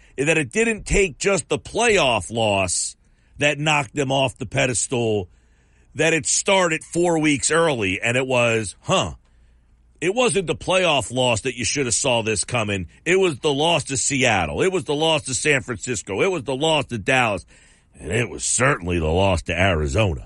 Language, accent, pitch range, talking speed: English, American, 105-160 Hz, 185 wpm